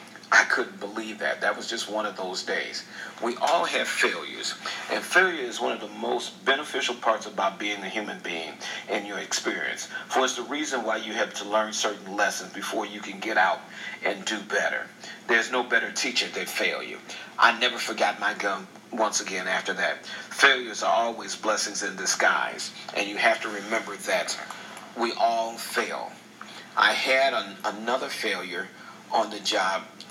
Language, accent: English, American